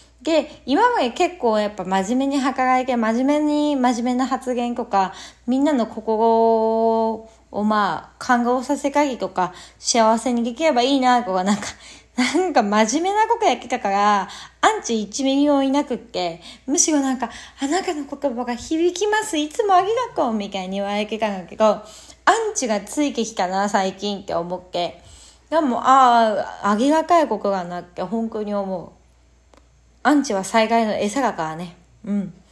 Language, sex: Japanese, female